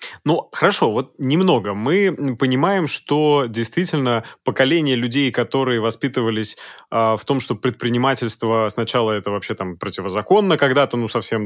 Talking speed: 130 wpm